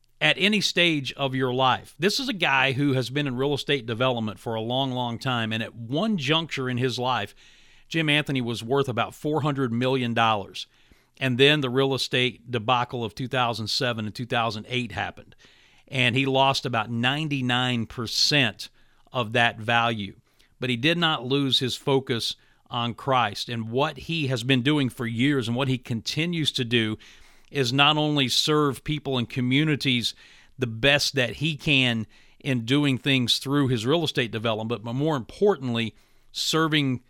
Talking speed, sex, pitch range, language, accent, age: 165 wpm, male, 120-140 Hz, English, American, 50-69